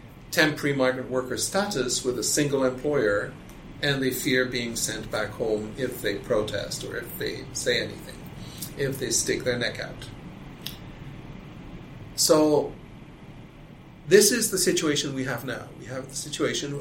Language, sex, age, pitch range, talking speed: English, male, 40-59, 130-160 Hz, 145 wpm